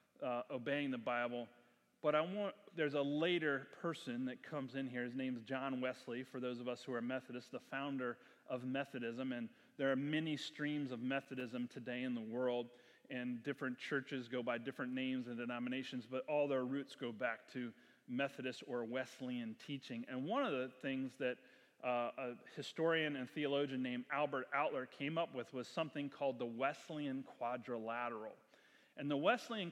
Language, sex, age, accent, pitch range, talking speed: English, male, 30-49, American, 125-150 Hz, 175 wpm